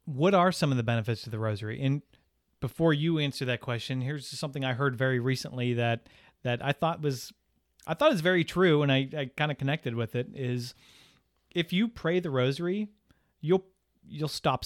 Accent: American